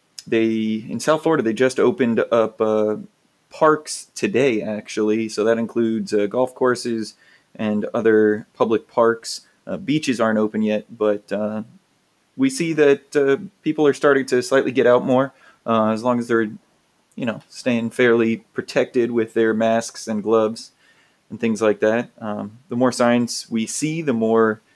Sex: male